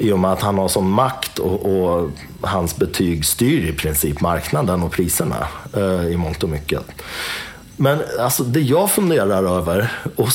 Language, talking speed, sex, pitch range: Swedish, 175 wpm, male, 95-130 Hz